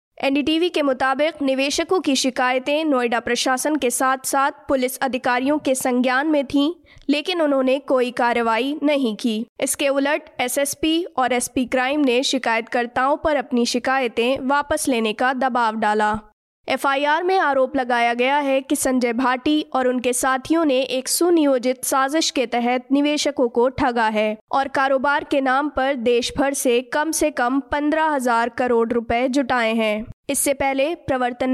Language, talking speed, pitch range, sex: Hindi, 155 wpm, 245-285 Hz, female